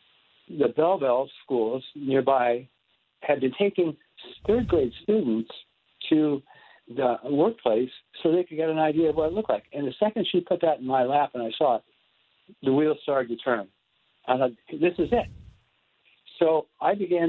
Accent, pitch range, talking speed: American, 125-160 Hz, 170 wpm